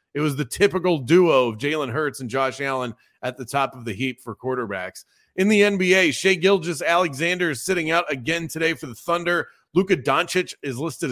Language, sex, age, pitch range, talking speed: English, male, 30-49, 130-175 Hz, 195 wpm